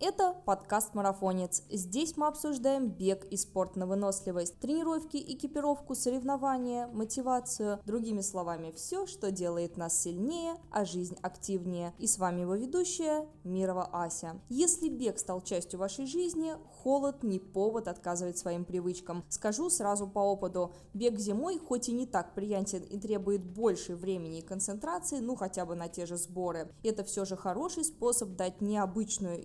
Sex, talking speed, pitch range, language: female, 155 wpm, 185-255 Hz, Russian